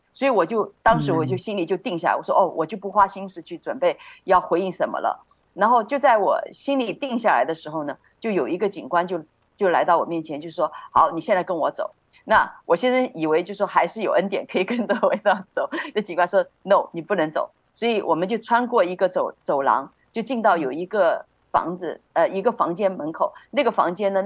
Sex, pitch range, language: female, 175-235 Hz, Chinese